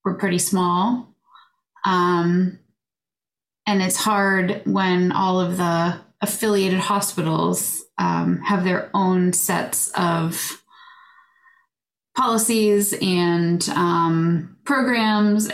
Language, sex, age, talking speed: English, female, 20-39, 90 wpm